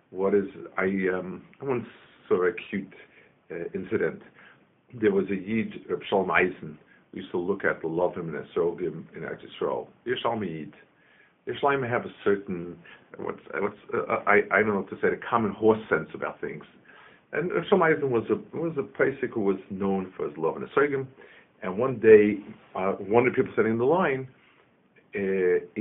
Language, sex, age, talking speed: English, male, 50-69, 180 wpm